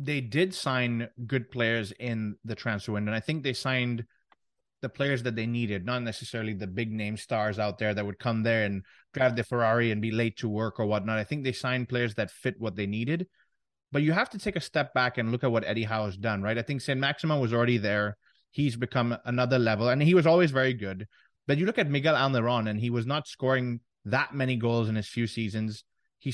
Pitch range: 110-135 Hz